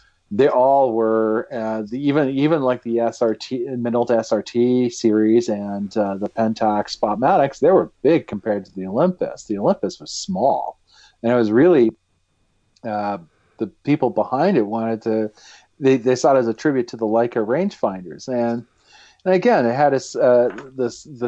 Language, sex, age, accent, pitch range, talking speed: English, male, 40-59, American, 105-125 Hz, 165 wpm